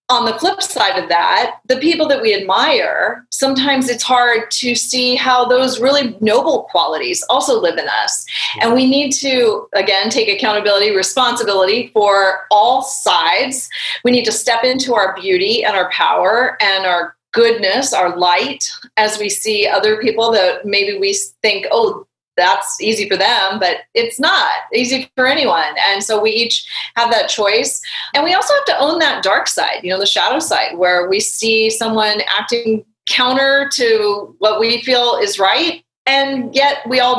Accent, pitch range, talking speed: American, 200-260 Hz, 175 wpm